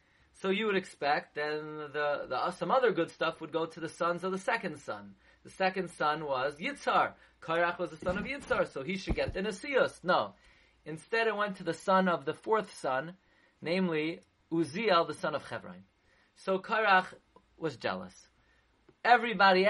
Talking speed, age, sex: 175 wpm, 30-49, male